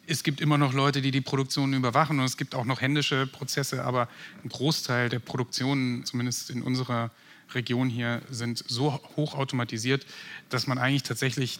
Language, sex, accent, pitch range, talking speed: German, male, German, 130-155 Hz, 175 wpm